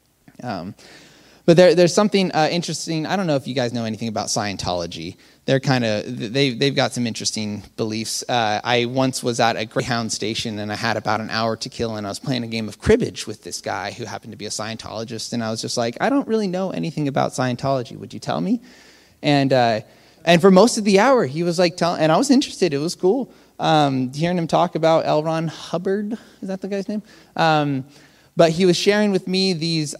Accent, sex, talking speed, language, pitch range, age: American, male, 235 wpm, English, 120-165 Hz, 20-39